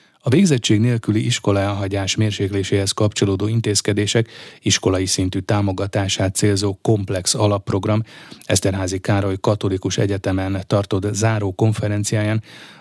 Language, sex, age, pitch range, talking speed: Hungarian, male, 30-49, 100-115 Hz, 90 wpm